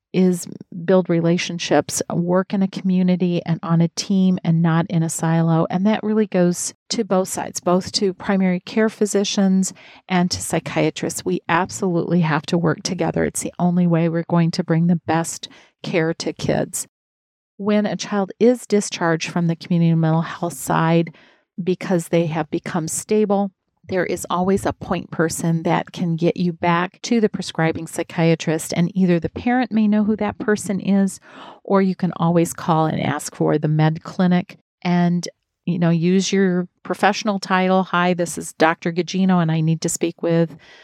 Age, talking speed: 40-59, 175 wpm